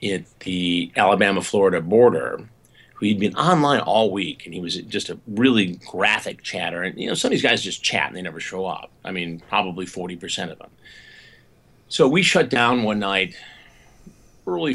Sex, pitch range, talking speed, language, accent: male, 95-120 Hz, 185 wpm, English, American